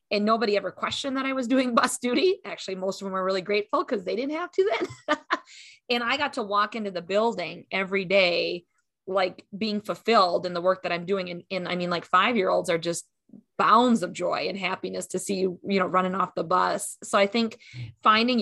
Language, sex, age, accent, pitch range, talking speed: English, female, 20-39, American, 180-230 Hz, 220 wpm